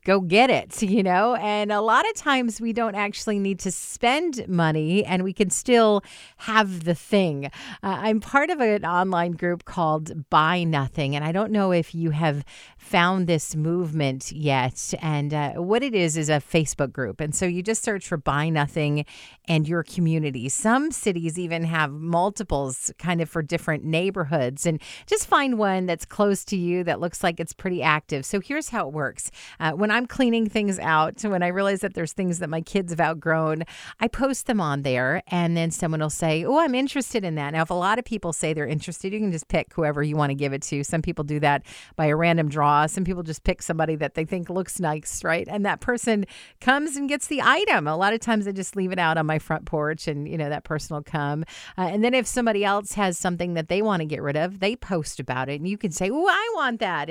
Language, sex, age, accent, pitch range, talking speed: English, female, 40-59, American, 155-210 Hz, 230 wpm